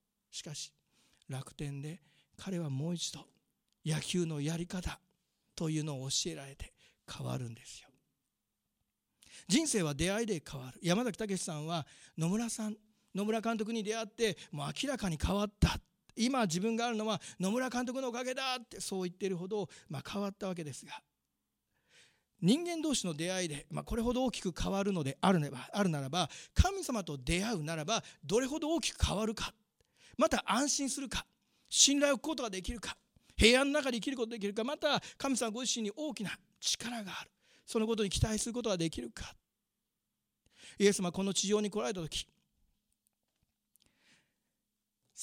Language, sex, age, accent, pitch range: Japanese, male, 40-59, native, 165-235 Hz